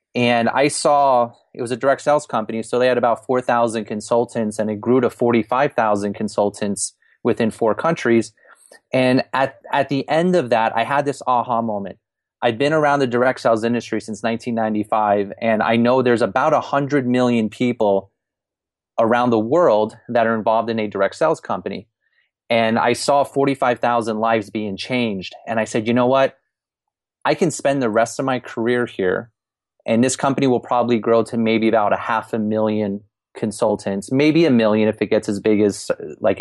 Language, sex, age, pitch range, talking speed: English, male, 30-49, 110-125 Hz, 180 wpm